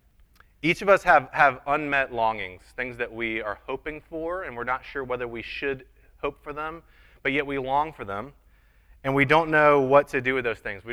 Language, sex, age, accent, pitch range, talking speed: English, male, 30-49, American, 95-130 Hz, 220 wpm